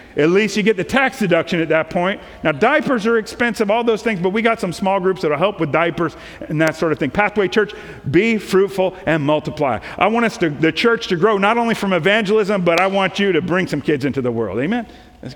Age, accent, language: 50-69, American, English